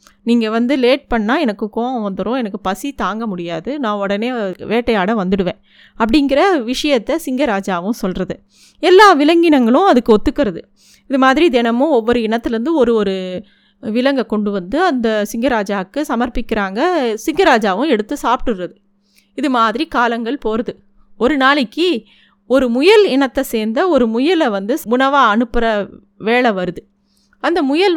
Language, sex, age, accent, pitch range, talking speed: Tamil, female, 20-39, native, 210-275 Hz, 125 wpm